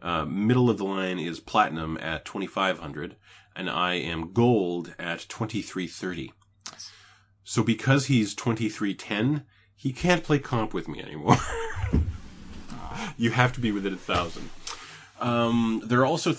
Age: 30-49